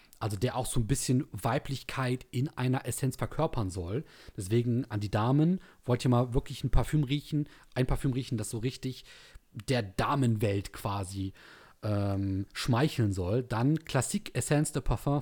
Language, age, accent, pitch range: German, 30-49, German, 115-145 Hz